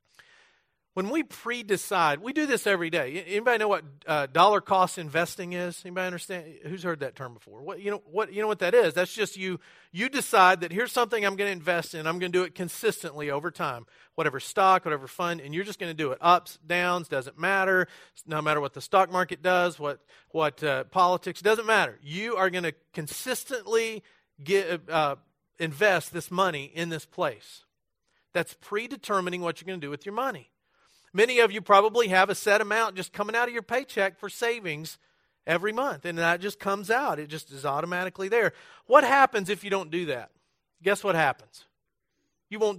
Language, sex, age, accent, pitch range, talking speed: English, male, 40-59, American, 160-210 Hz, 200 wpm